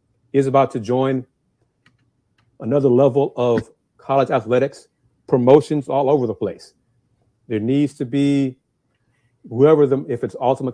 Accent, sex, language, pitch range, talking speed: American, male, English, 125-160 Hz, 130 wpm